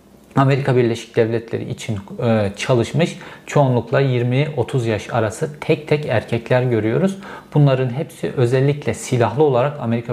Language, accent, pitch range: Turkish, native, 115-155 Hz